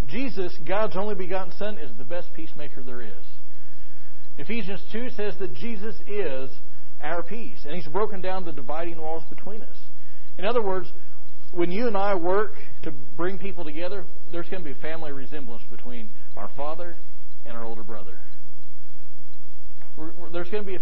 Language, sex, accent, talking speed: English, male, American, 170 wpm